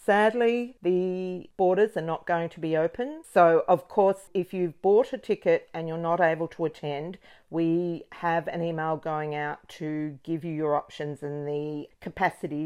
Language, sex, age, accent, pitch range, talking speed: English, female, 50-69, Australian, 160-190 Hz, 180 wpm